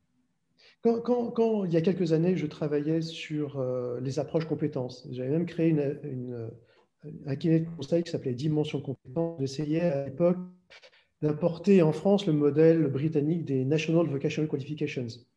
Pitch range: 135-180 Hz